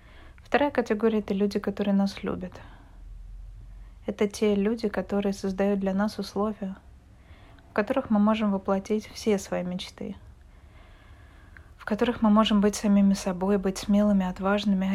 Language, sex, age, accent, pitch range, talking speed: Russian, female, 20-39, native, 175-205 Hz, 135 wpm